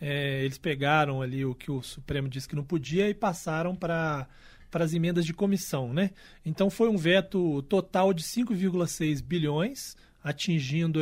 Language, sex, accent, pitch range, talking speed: Portuguese, male, Brazilian, 150-200 Hz, 160 wpm